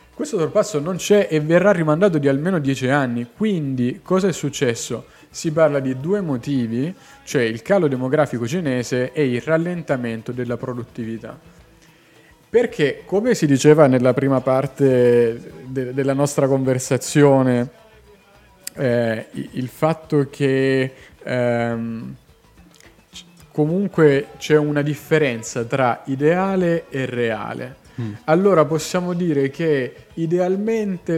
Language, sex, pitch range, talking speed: Italian, male, 125-160 Hz, 110 wpm